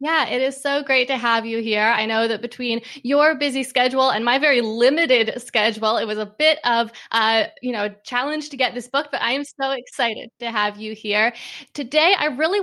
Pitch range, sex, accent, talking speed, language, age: 220-280 Hz, female, American, 215 wpm, English, 20-39